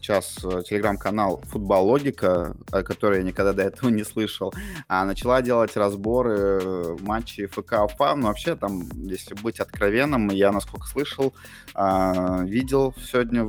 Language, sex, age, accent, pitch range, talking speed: Russian, male, 20-39, native, 95-125 Hz, 120 wpm